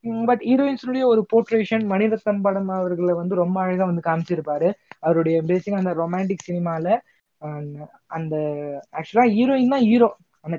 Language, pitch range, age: Tamil, 160-200 Hz, 20-39